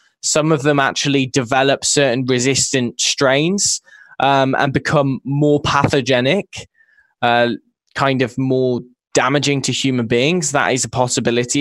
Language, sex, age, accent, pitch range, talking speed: English, male, 10-29, British, 125-150 Hz, 130 wpm